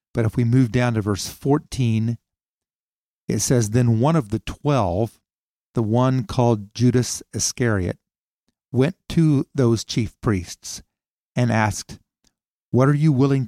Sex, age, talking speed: male, 50-69, 140 wpm